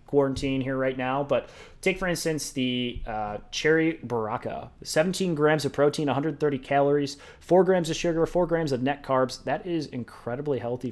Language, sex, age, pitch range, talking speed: English, male, 30-49, 120-150 Hz, 170 wpm